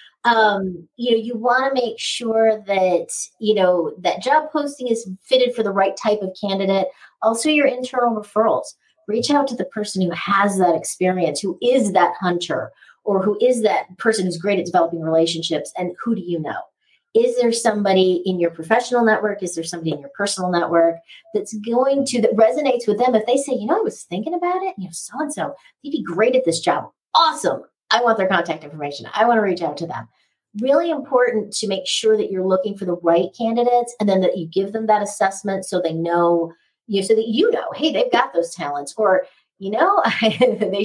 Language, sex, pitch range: English, female, 185-245 Hz